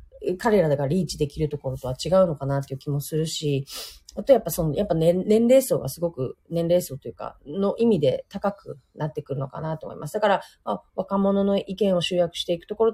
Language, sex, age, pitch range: Japanese, female, 30-49, 140-200 Hz